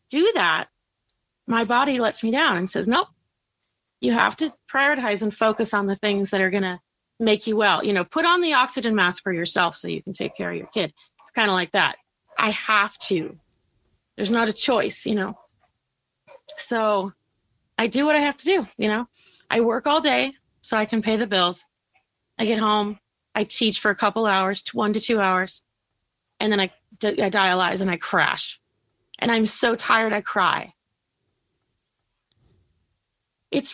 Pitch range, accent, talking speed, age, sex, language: 180-240 Hz, American, 185 wpm, 30-49, female, English